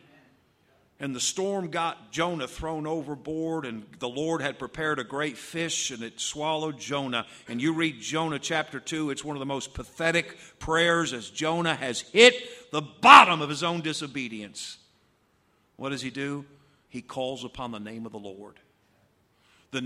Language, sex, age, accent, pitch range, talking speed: English, male, 50-69, American, 130-190 Hz, 165 wpm